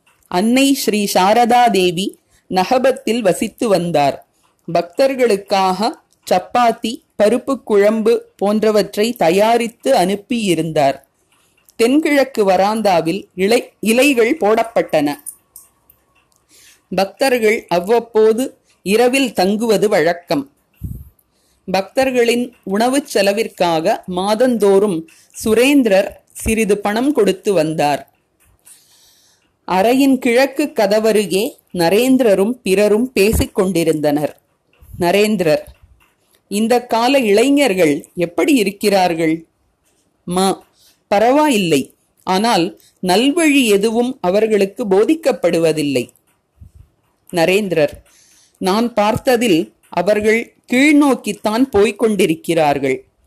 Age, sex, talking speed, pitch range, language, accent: 30-49, female, 65 wpm, 180-240 Hz, Tamil, native